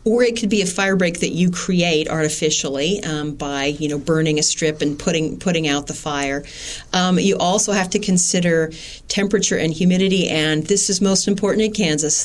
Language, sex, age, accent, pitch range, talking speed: English, female, 40-59, American, 160-205 Hz, 195 wpm